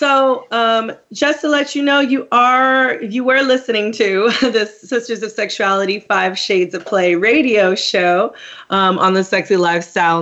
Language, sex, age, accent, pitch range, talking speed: English, female, 30-49, American, 175-225 Hz, 165 wpm